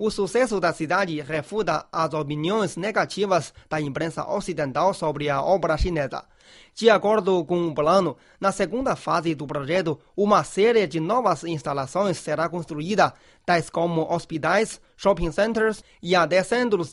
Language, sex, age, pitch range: Chinese, male, 30-49, 155-200 Hz